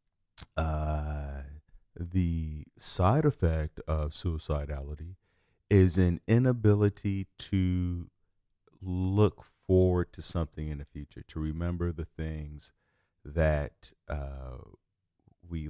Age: 40-59